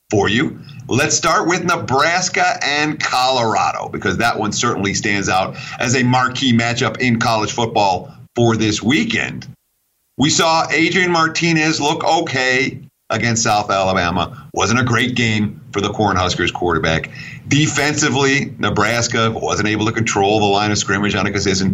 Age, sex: 50-69, male